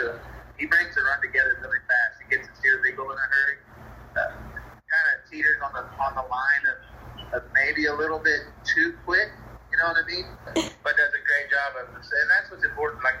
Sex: male